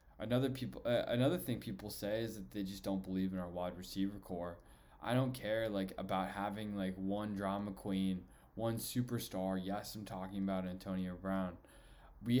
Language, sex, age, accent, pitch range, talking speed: English, male, 20-39, American, 100-130 Hz, 180 wpm